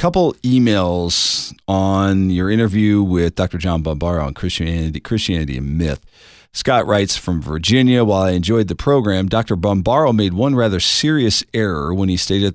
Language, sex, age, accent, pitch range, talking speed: English, male, 40-59, American, 90-115 Hz, 160 wpm